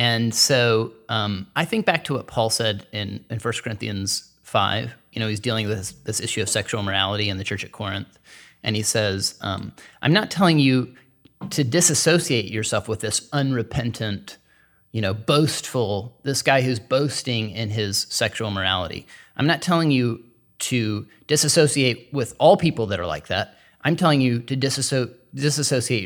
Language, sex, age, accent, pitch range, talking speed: English, male, 30-49, American, 110-140 Hz, 170 wpm